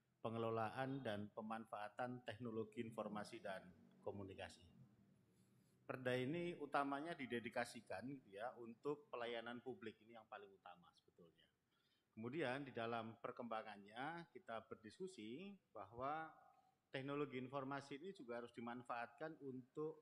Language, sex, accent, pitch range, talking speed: Indonesian, male, native, 115-140 Hz, 100 wpm